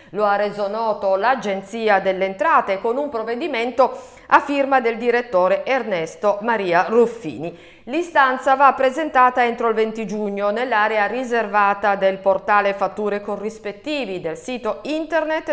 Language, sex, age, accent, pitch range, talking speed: Italian, female, 50-69, native, 190-260 Hz, 130 wpm